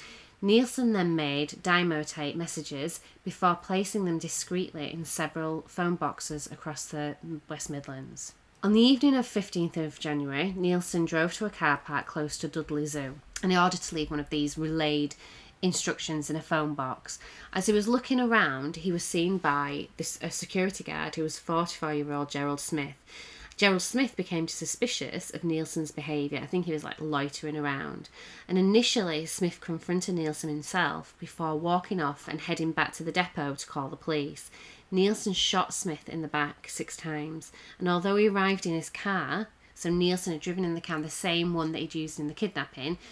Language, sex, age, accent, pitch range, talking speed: English, female, 30-49, British, 150-180 Hz, 180 wpm